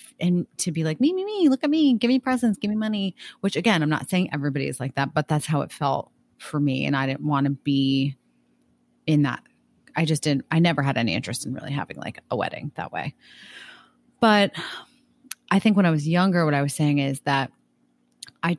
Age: 30-49